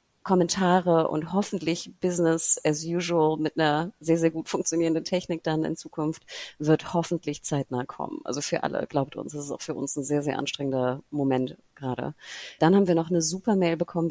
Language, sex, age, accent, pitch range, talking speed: German, female, 30-49, German, 145-175 Hz, 185 wpm